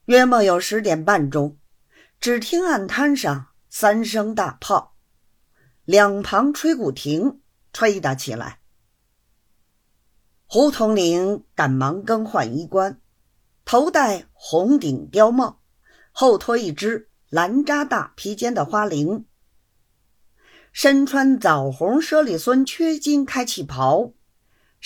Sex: female